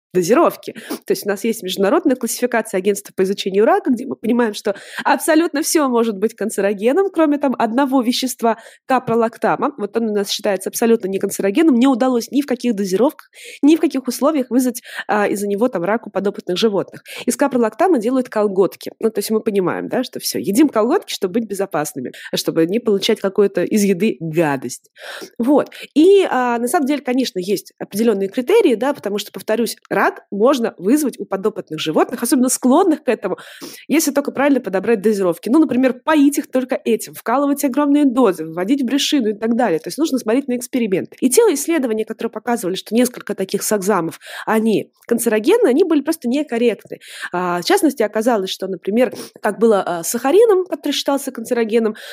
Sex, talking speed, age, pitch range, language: female, 175 wpm, 20-39, 205-270 Hz, Russian